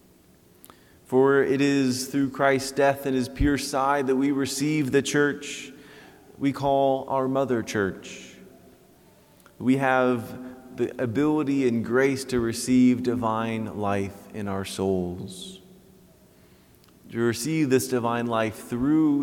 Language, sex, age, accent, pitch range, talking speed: English, male, 30-49, American, 105-135 Hz, 120 wpm